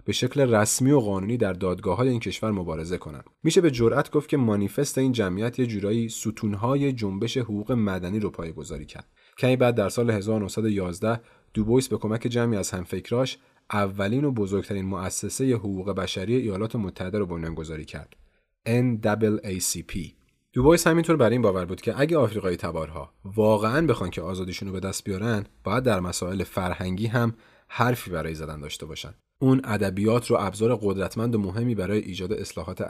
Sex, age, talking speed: male, 30-49, 165 wpm